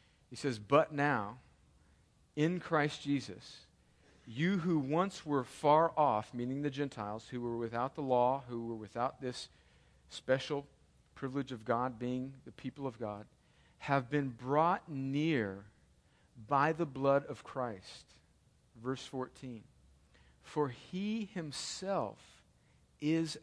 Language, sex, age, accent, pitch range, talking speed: English, male, 50-69, American, 130-180 Hz, 125 wpm